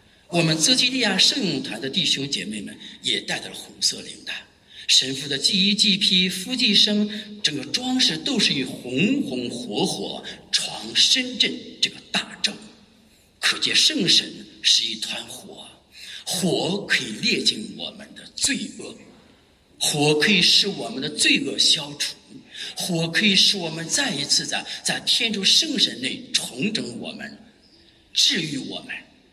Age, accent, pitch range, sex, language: 50-69, Chinese, 190-240 Hz, male, English